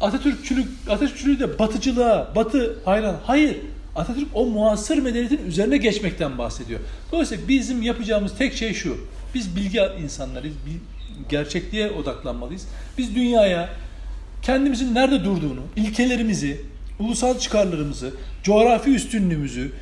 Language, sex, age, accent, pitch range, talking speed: Turkish, male, 40-59, native, 170-250 Hz, 110 wpm